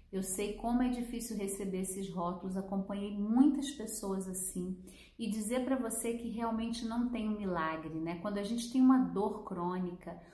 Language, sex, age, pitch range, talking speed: Portuguese, female, 40-59, 190-240 Hz, 175 wpm